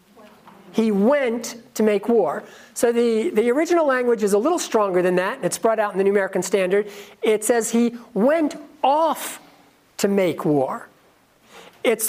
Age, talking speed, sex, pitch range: 50-69, 165 wpm, male, 195-270 Hz